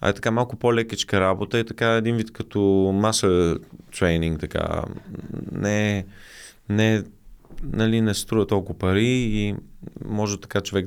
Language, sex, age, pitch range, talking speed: Bulgarian, male, 20-39, 90-110 Hz, 140 wpm